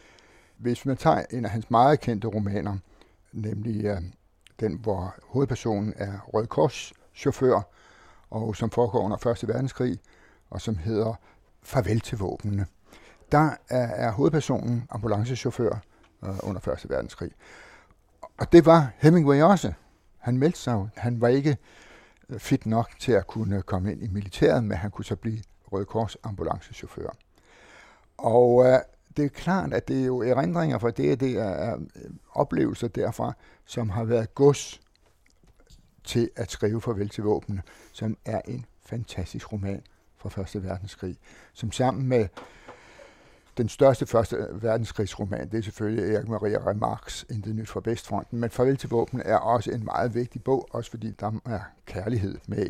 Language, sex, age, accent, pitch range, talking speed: Danish, male, 60-79, native, 100-125 Hz, 145 wpm